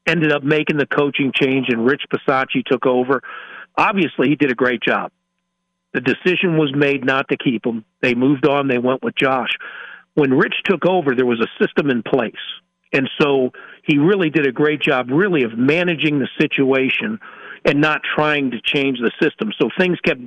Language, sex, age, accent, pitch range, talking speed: English, male, 50-69, American, 130-155 Hz, 190 wpm